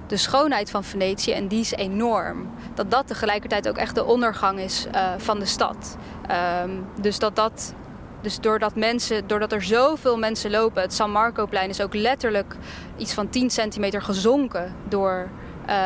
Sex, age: female, 10-29